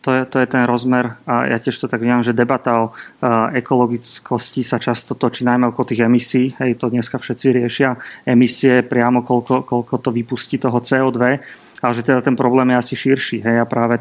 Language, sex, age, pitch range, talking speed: Slovak, male, 30-49, 120-135 Hz, 205 wpm